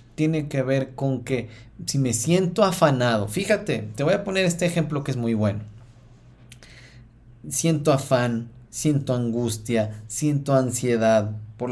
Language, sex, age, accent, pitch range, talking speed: Spanish, male, 30-49, Mexican, 115-150 Hz, 140 wpm